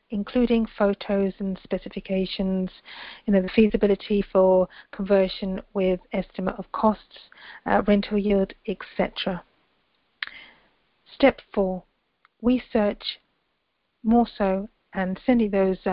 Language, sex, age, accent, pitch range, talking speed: English, female, 40-59, British, 185-215 Hz, 105 wpm